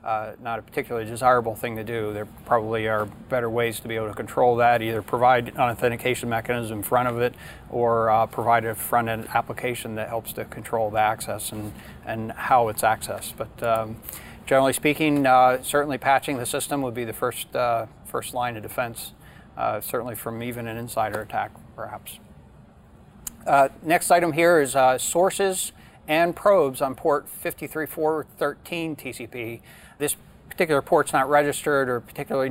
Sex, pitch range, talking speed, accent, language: male, 115-145 Hz, 170 wpm, American, English